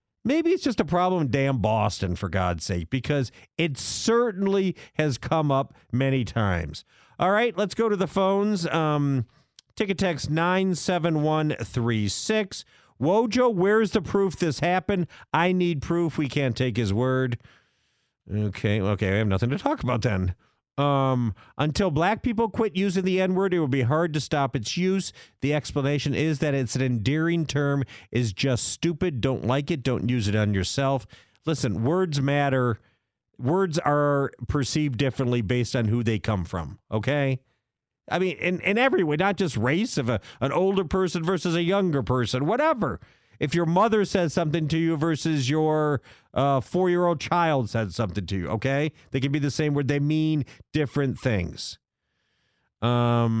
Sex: male